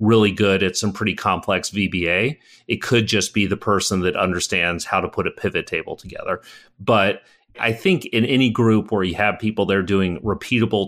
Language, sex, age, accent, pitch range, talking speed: English, male, 40-59, American, 90-110 Hz, 200 wpm